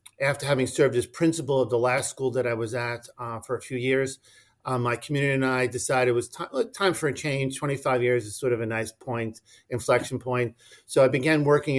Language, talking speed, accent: English, 225 wpm, American